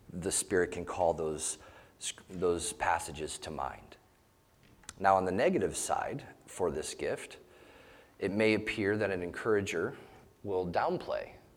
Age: 30-49